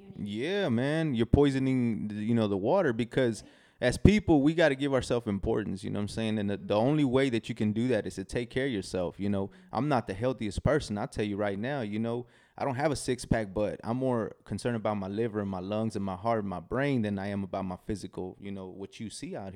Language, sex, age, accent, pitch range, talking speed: English, male, 20-39, American, 100-125 Hz, 260 wpm